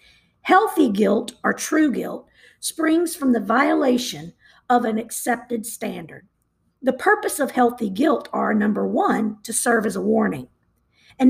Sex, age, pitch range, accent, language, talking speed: female, 50-69, 225-285 Hz, American, English, 145 wpm